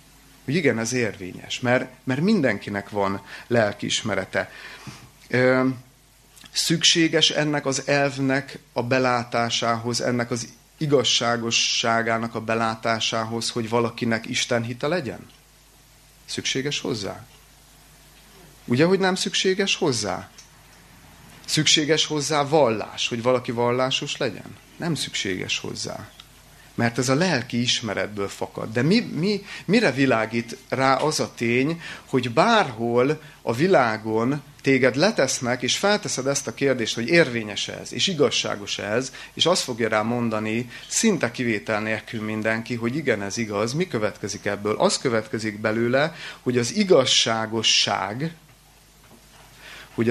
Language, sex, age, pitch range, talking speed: Hungarian, male, 30-49, 115-145 Hz, 115 wpm